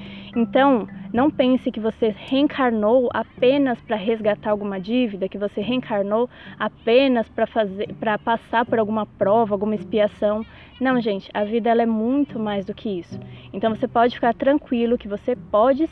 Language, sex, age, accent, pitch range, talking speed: Portuguese, female, 20-39, Brazilian, 205-250 Hz, 155 wpm